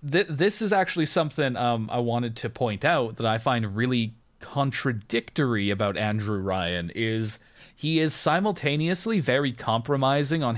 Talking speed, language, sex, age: 140 wpm, English, male, 30-49